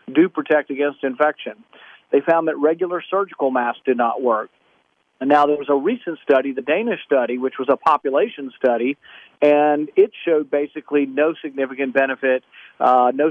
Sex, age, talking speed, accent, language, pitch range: male, 50-69, 165 wpm, American, English, 140-175 Hz